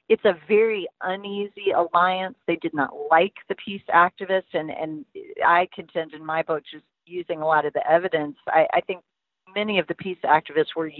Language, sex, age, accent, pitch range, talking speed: English, female, 40-59, American, 160-195 Hz, 190 wpm